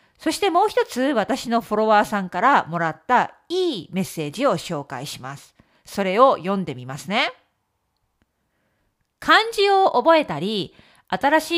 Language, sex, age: Japanese, female, 40-59